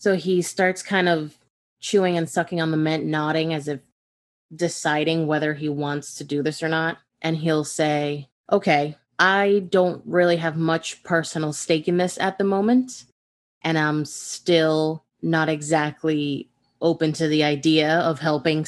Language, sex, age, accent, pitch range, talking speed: English, female, 20-39, American, 155-185 Hz, 160 wpm